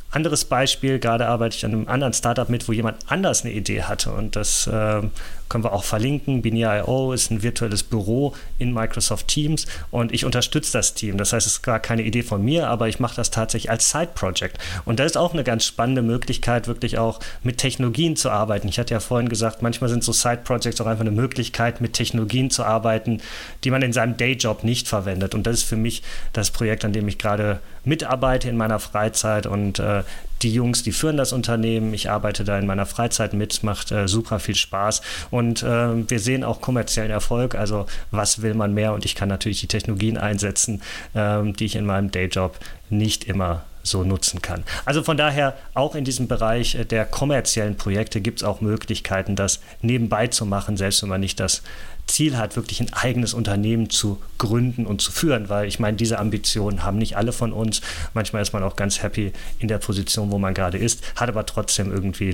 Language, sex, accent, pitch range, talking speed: German, male, German, 105-120 Hz, 210 wpm